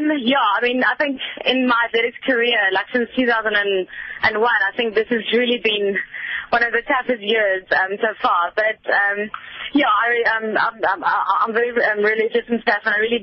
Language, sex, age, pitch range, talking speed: English, female, 20-39, 205-245 Hz, 195 wpm